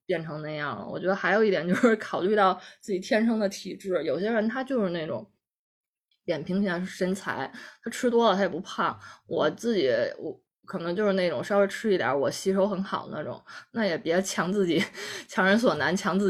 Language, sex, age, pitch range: Chinese, female, 20-39, 175-220 Hz